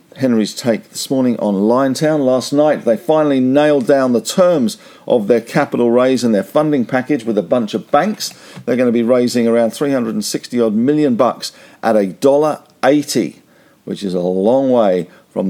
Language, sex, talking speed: English, male, 175 wpm